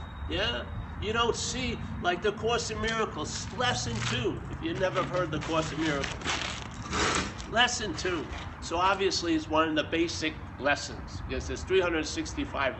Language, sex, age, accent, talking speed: English, male, 50-69, American, 150 wpm